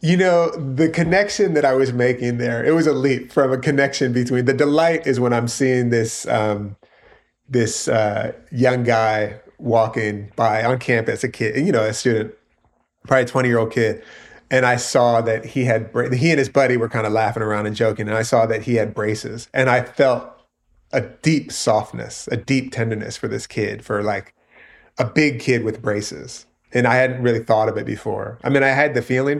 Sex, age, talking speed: male, 30-49, 210 wpm